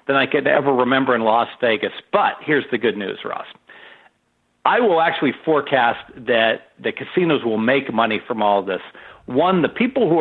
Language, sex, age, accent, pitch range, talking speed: English, male, 50-69, American, 120-160 Hz, 190 wpm